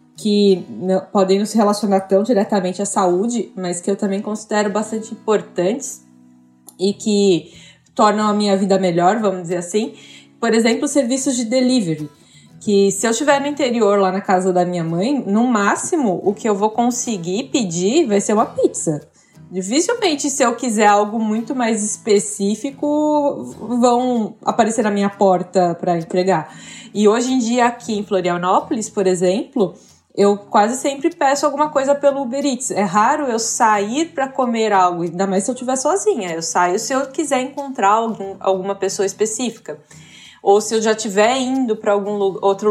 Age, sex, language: 20-39, female, Portuguese